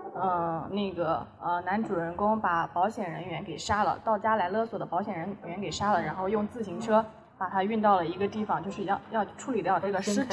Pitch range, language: 180-220 Hz, Chinese